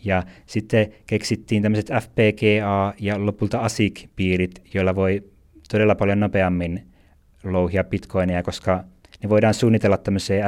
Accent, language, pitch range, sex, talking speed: native, Finnish, 90-105 Hz, male, 115 wpm